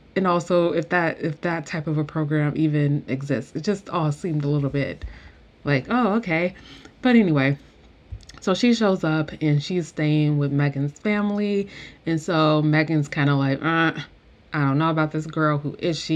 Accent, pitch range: American, 145-175 Hz